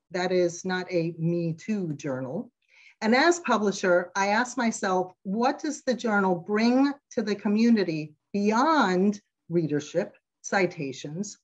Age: 50-69